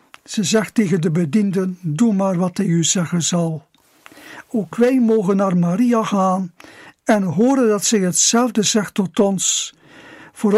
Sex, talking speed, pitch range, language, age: male, 160 wpm, 190-240 Hz, Dutch, 60-79